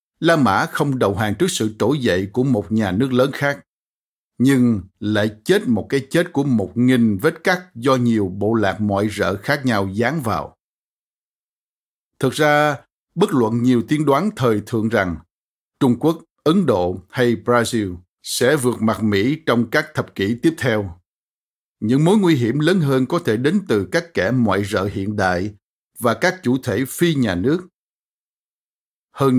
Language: Vietnamese